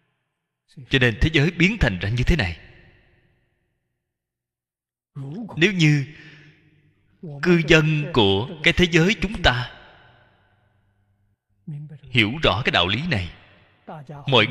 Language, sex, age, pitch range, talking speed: Vietnamese, male, 20-39, 100-165 Hz, 110 wpm